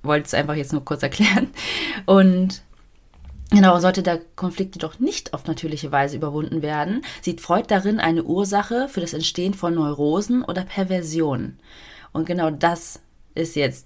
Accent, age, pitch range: German, 30-49, 140-190 Hz